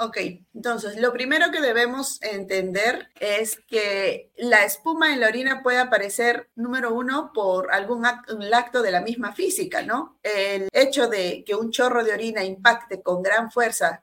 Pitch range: 205-255 Hz